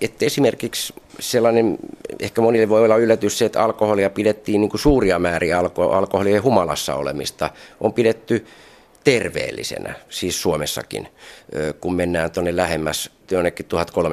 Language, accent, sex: Finnish, native, male